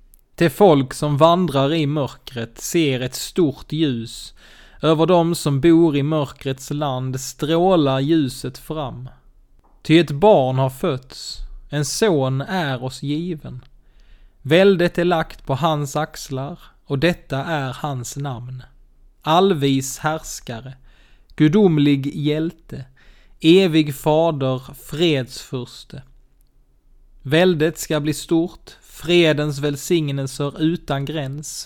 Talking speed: 105 wpm